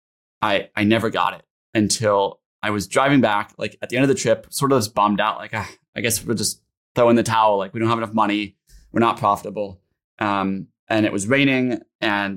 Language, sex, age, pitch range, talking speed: English, male, 20-39, 105-125 Hz, 230 wpm